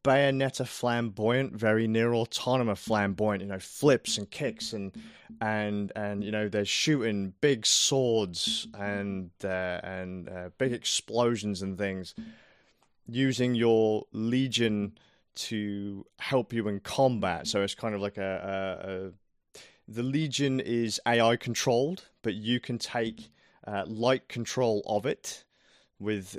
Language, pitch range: English, 100-125 Hz